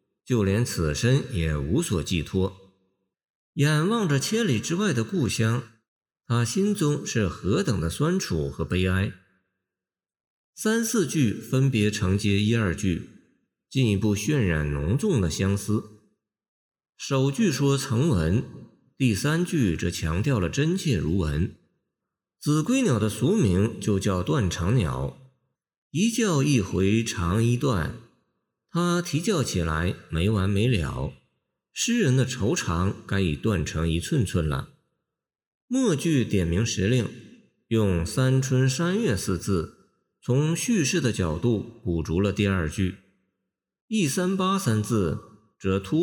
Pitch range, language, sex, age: 95-140 Hz, Chinese, male, 50-69